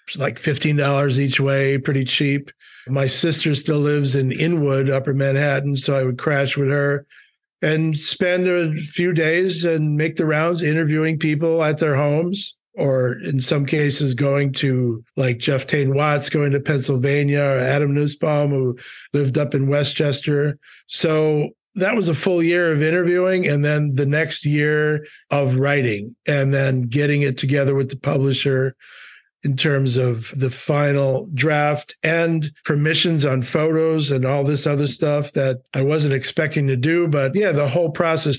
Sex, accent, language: male, American, English